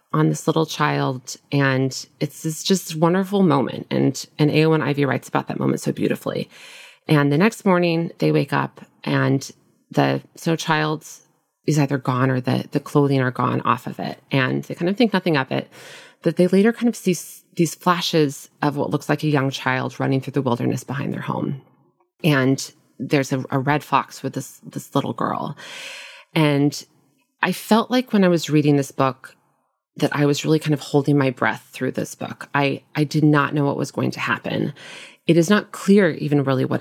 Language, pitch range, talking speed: English, 135-165 Hz, 200 wpm